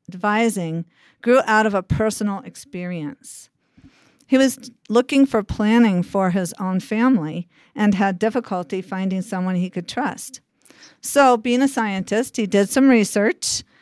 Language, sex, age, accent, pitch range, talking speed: English, female, 50-69, American, 185-235 Hz, 140 wpm